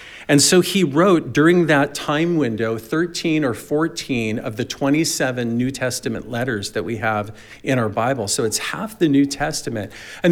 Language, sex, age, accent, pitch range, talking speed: English, male, 50-69, American, 120-150 Hz, 175 wpm